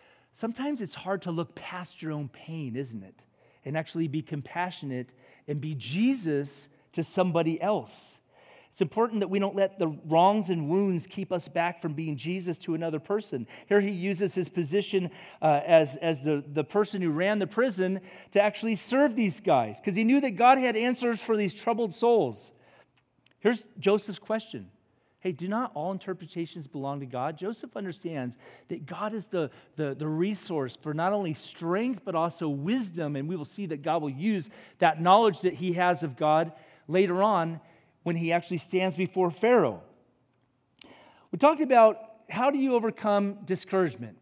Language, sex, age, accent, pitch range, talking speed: English, male, 40-59, American, 155-205 Hz, 175 wpm